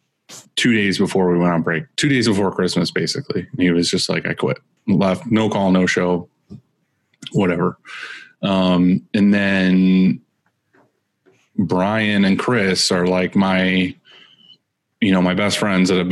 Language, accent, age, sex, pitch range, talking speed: English, American, 20-39, male, 90-100 Hz, 150 wpm